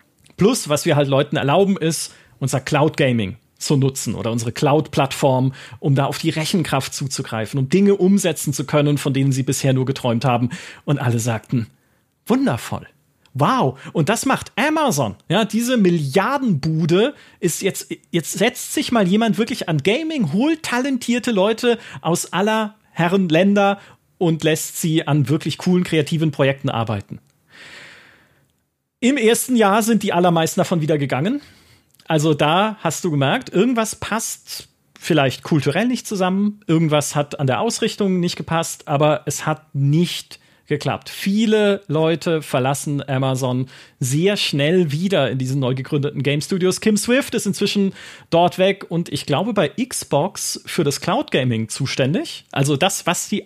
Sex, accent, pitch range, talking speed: male, German, 140-195 Hz, 150 wpm